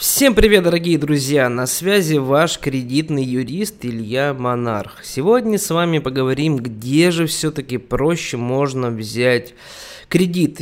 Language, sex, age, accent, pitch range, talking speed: Russian, male, 20-39, native, 130-160 Hz, 125 wpm